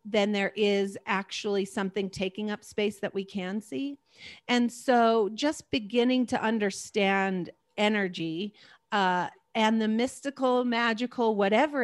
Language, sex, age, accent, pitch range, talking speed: English, female, 40-59, American, 190-225 Hz, 125 wpm